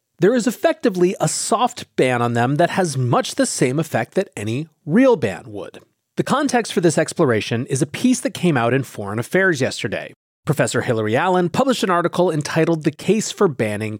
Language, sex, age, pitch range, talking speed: English, male, 30-49, 130-195 Hz, 195 wpm